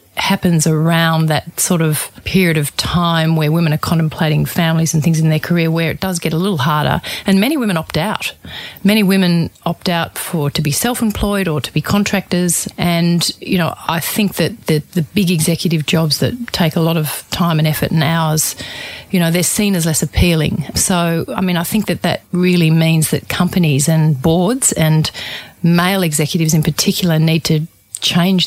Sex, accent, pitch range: female, Australian, 160-185 Hz